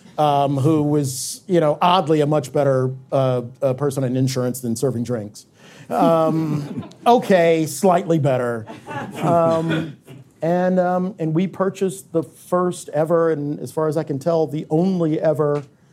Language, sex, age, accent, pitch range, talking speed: English, male, 50-69, American, 140-170 Hz, 150 wpm